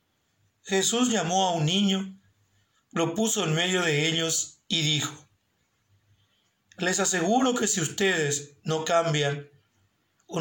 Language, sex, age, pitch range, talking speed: English, male, 40-59, 115-175 Hz, 120 wpm